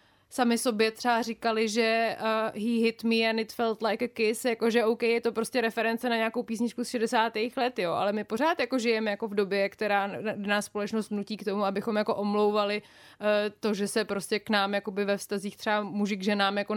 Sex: female